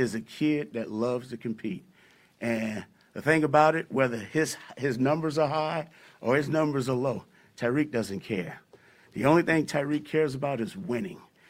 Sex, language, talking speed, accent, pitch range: male, English, 175 wpm, American, 120-155 Hz